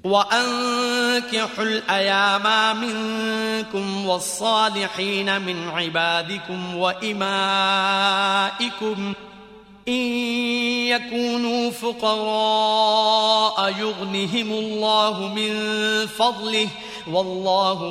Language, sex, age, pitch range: Korean, male, 30-49, 195-235 Hz